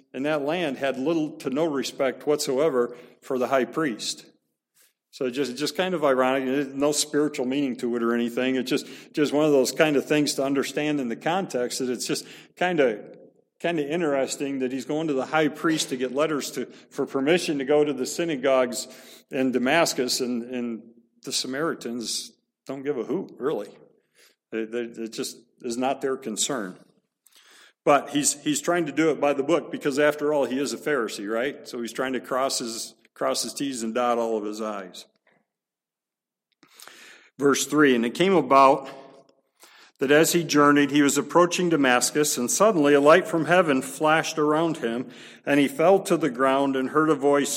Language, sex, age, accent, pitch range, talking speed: English, male, 50-69, American, 125-150 Hz, 190 wpm